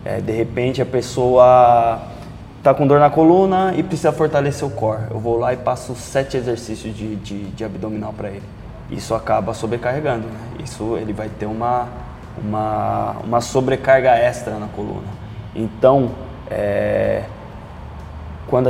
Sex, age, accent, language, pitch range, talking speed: male, 20-39, Brazilian, Portuguese, 110-130 Hz, 150 wpm